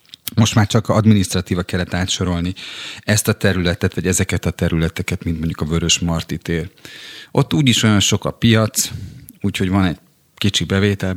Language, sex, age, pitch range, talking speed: Hungarian, male, 40-59, 90-110 Hz, 155 wpm